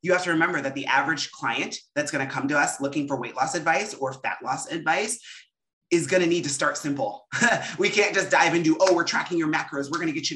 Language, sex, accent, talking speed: English, male, American, 260 wpm